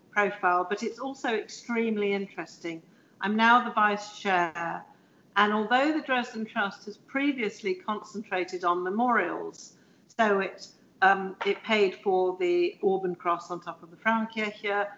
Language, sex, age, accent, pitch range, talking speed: German, female, 50-69, British, 185-225 Hz, 140 wpm